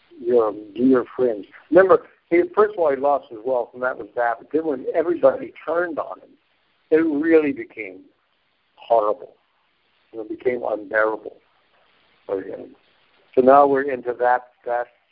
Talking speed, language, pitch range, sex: 150 wpm, English, 120-160 Hz, male